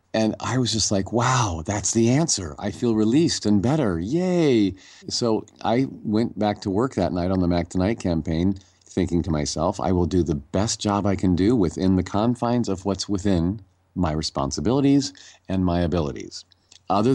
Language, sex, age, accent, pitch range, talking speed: English, male, 40-59, American, 85-105 Hz, 180 wpm